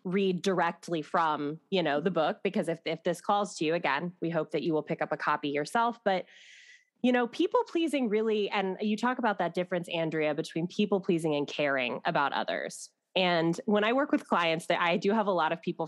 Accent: American